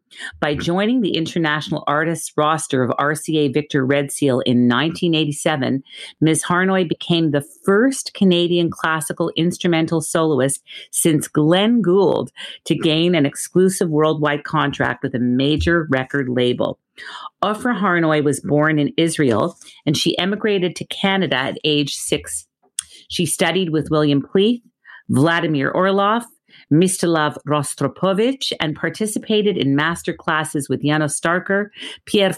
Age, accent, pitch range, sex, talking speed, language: 40-59, American, 145-180 Hz, female, 125 wpm, English